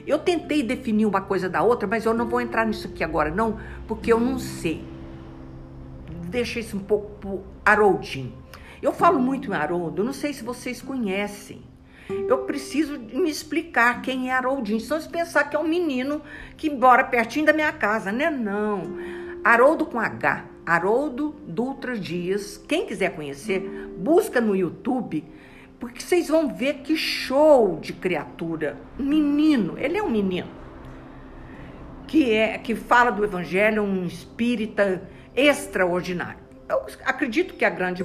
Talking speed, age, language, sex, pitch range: 155 wpm, 60-79, Portuguese, female, 185-290 Hz